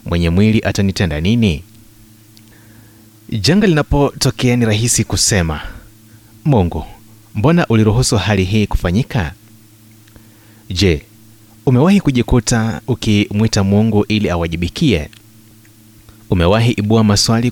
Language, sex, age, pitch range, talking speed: Swahili, male, 30-49, 105-120 Hz, 85 wpm